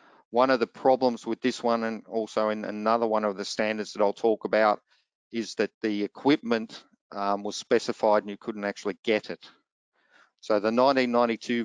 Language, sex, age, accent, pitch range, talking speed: English, male, 50-69, Australian, 100-115 Hz, 180 wpm